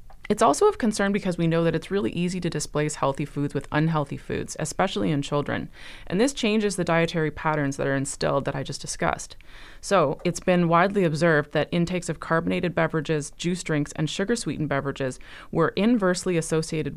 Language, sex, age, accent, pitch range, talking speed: English, female, 30-49, American, 150-180 Hz, 185 wpm